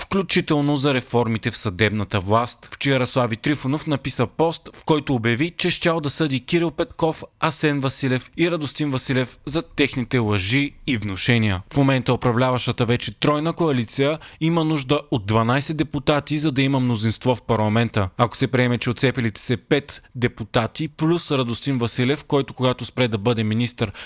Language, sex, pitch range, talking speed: Bulgarian, male, 115-150 Hz, 160 wpm